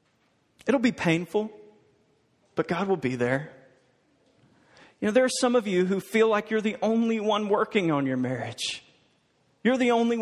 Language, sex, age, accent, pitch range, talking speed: English, male, 40-59, American, 155-210 Hz, 170 wpm